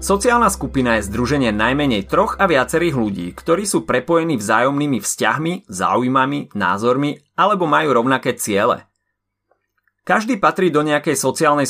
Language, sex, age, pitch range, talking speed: Slovak, male, 30-49, 115-170 Hz, 130 wpm